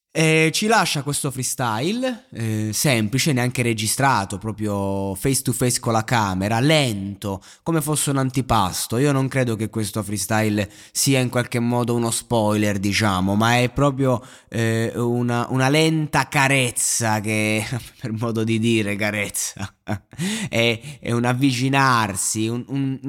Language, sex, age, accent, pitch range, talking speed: Italian, male, 20-39, native, 115-145 Hz, 140 wpm